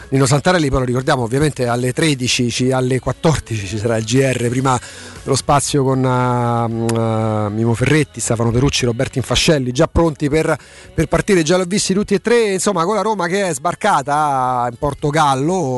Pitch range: 130-160 Hz